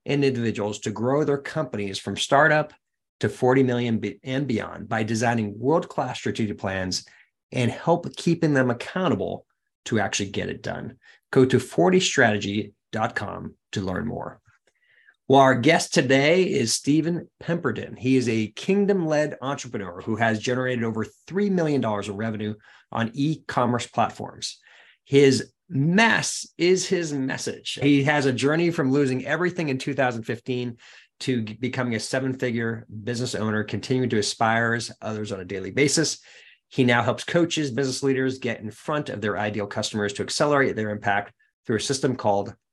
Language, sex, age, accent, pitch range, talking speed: English, male, 30-49, American, 110-140 Hz, 150 wpm